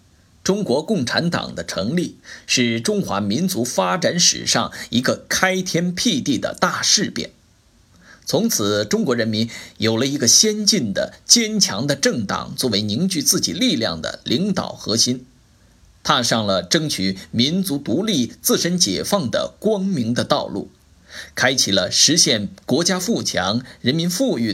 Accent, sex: native, male